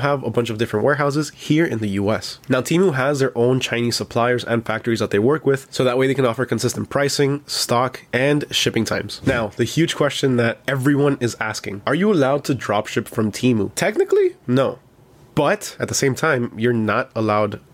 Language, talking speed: English, 205 wpm